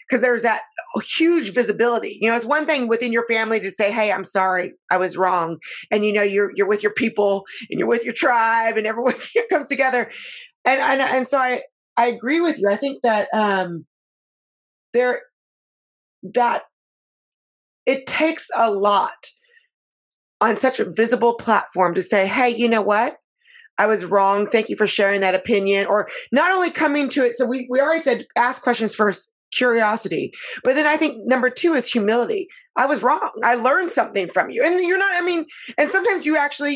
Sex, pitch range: female, 210-285 Hz